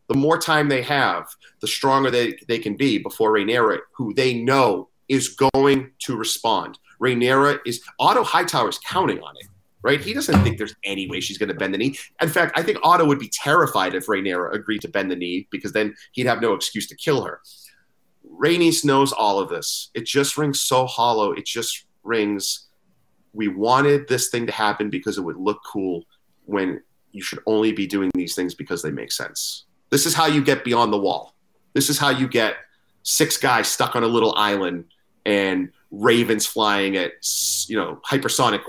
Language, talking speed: English, 200 wpm